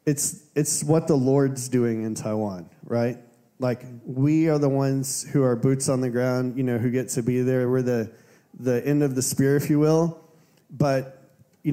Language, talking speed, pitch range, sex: English, 200 wpm, 125-150 Hz, male